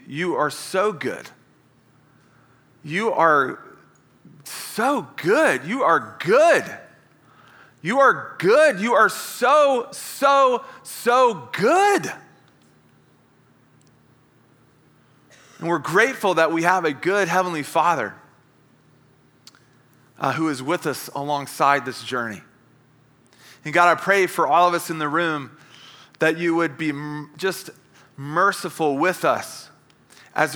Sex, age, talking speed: male, 30-49, 115 wpm